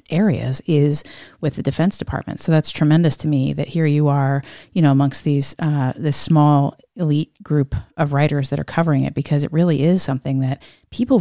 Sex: female